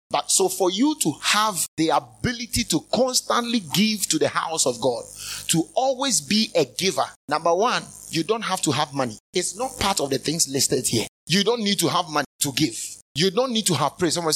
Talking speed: 215 wpm